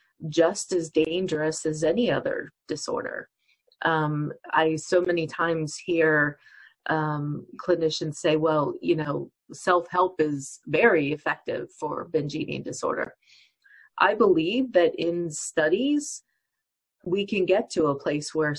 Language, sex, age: English, female, 30-49